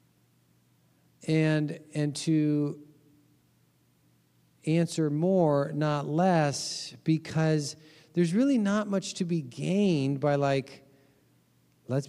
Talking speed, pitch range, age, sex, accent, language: 90 wpm, 110-155 Hz, 40-59, male, American, English